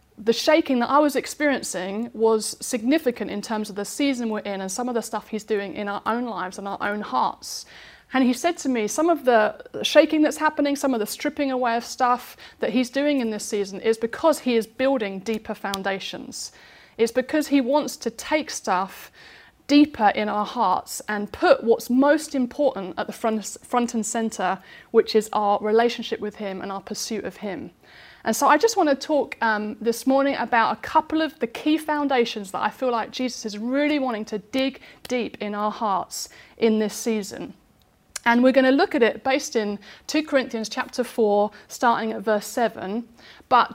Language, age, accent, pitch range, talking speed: English, 30-49, British, 215-275 Hz, 200 wpm